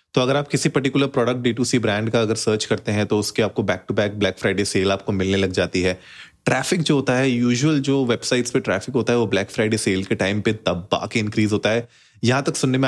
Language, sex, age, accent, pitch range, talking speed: Hindi, male, 30-49, native, 105-130 Hz, 250 wpm